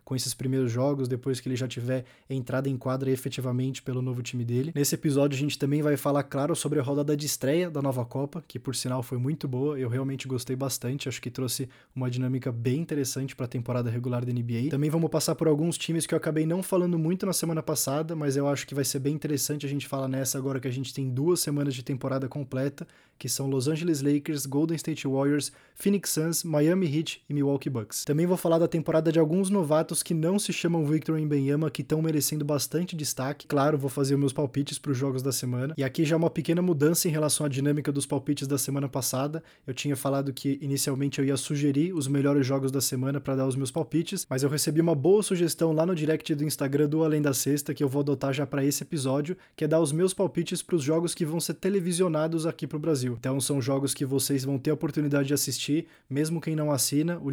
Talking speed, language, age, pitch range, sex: 240 wpm, Portuguese, 20-39, 135-160 Hz, male